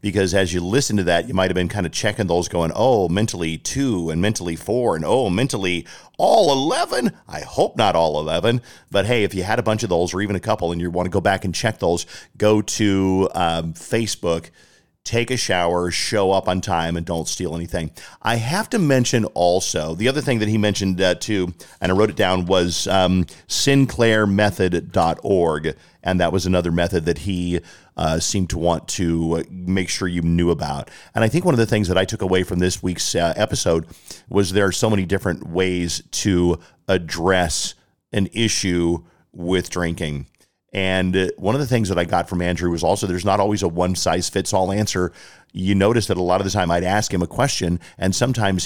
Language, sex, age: English, male, 40-59